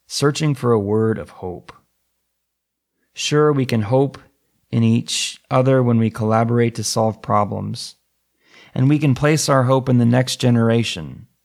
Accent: American